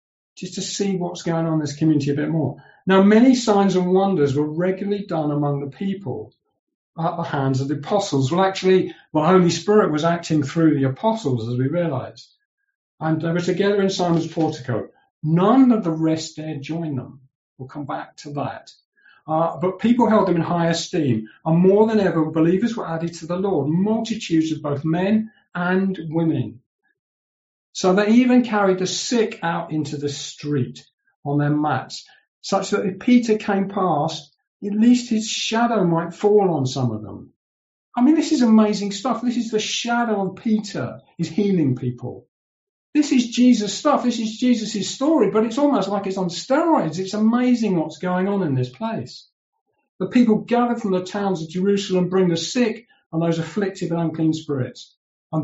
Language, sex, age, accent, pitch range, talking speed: English, male, 50-69, British, 155-215 Hz, 185 wpm